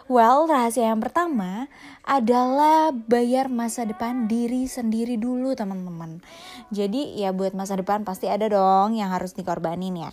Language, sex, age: Indonesian, female, 20-39